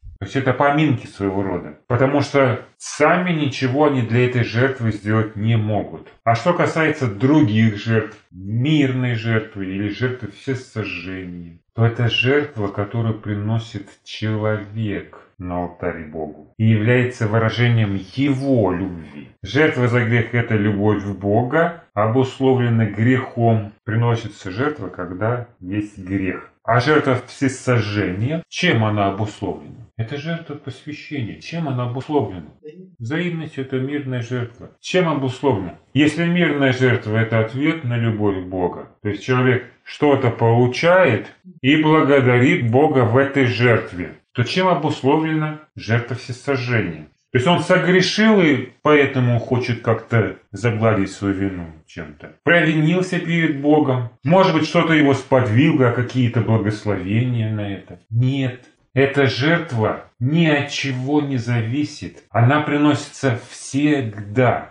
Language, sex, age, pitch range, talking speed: Russian, male, 30-49, 110-145 Hz, 125 wpm